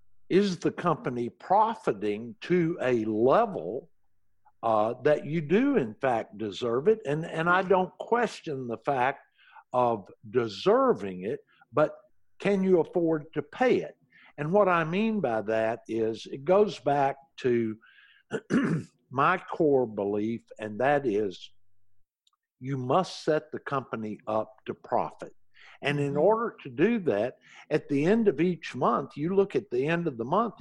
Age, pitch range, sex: 60-79, 125-195 Hz, male